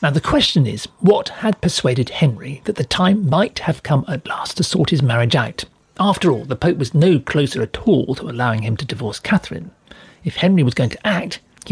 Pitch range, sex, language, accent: 135-185 Hz, male, English, British